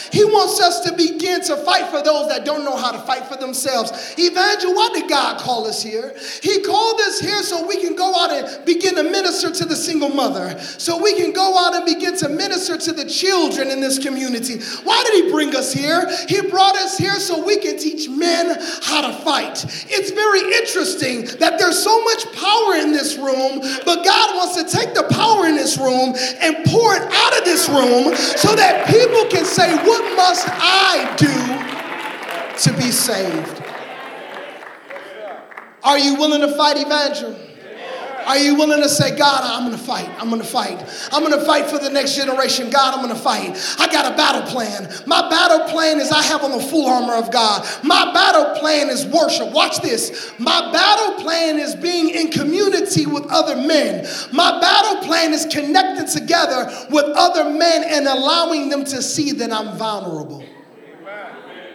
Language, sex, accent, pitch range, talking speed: English, male, American, 280-360 Hz, 195 wpm